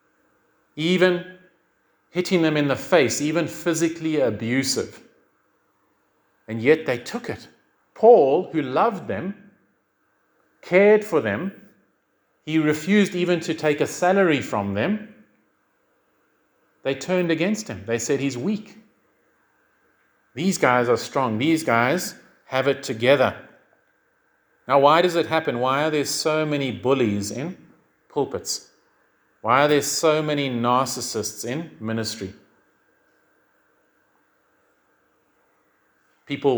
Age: 40-59